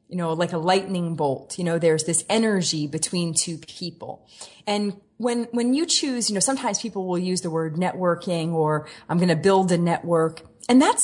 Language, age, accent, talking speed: English, 30-49, American, 200 wpm